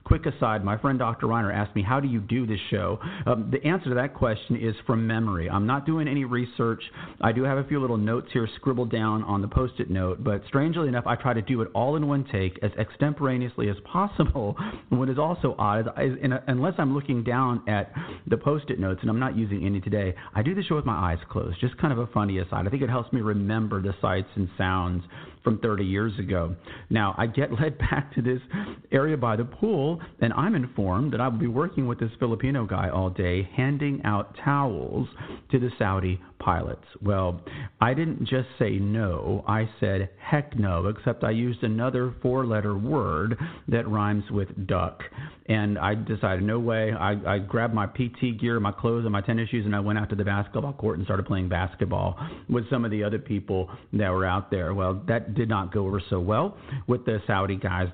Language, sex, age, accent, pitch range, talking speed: English, male, 40-59, American, 100-130 Hz, 220 wpm